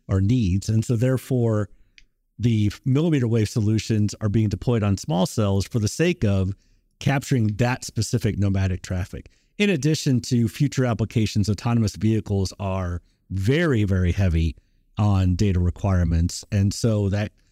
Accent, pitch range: American, 95-120 Hz